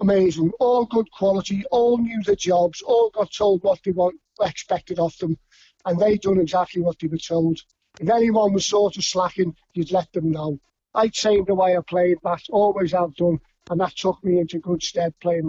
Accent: British